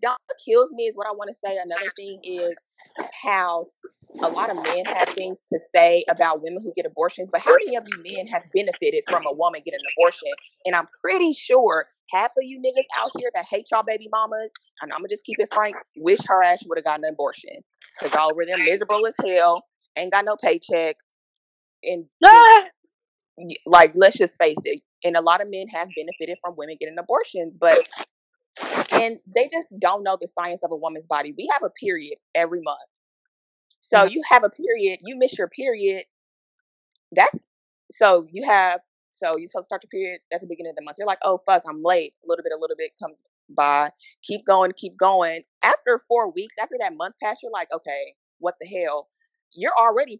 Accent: American